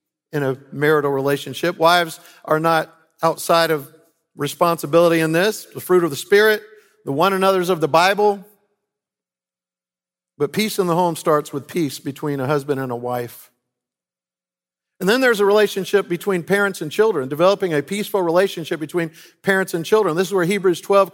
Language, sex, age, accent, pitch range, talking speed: English, male, 50-69, American, 170-215 Hz, 165 wpm